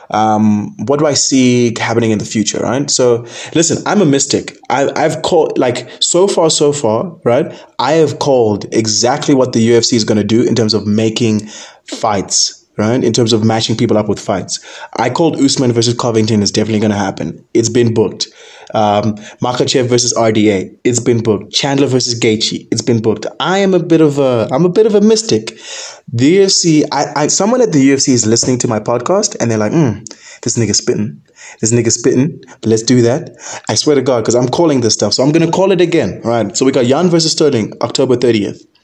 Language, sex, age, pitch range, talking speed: English, male, 20-39, 110-145 Hz, 215 wpm